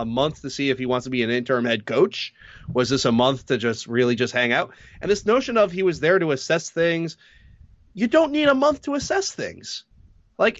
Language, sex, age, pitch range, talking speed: English, male, 30-49, 125-185 Hz, 240 wpm